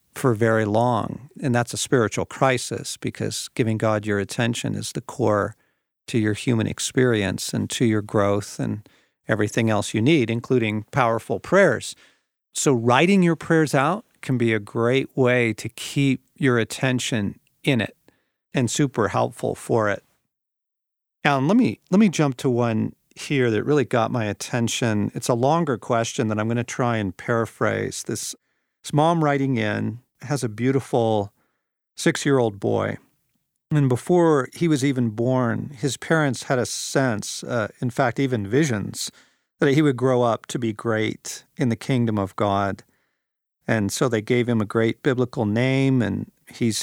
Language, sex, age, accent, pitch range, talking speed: English, male, 50-69, American, 110-135 Hz, 165 wpm